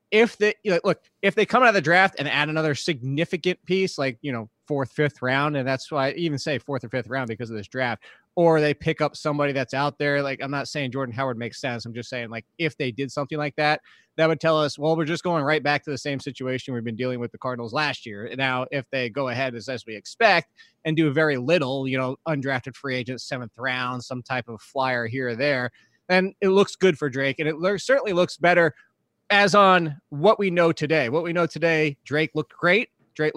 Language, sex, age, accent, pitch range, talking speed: English, male, 20-39, American, 135-170 Hz, 240 wpm